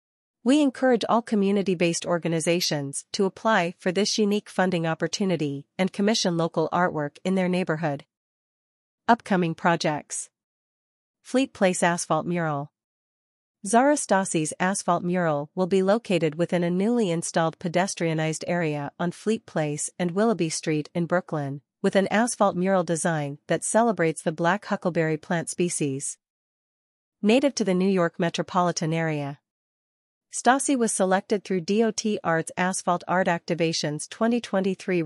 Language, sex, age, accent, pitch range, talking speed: English, female, 40-59, American, 165-200 Hz, 130 wpm